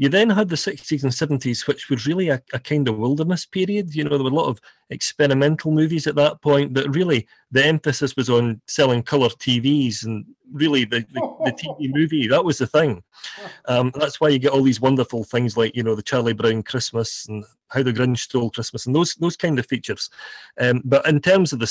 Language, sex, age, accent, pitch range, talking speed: English, male, 40-59, British, 120-150 Hz, 225 wpm